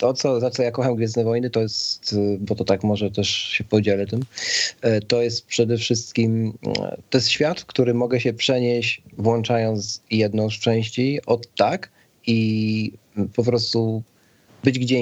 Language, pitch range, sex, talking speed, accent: Polish, 100-115 Hz, male, 155 wpm, native